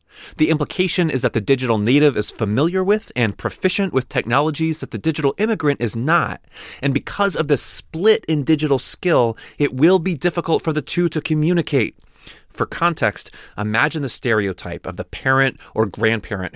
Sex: male